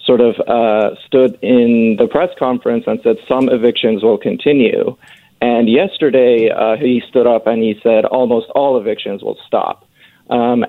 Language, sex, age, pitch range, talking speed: English, male, 40-59, 115-140 Hz, 165 wpm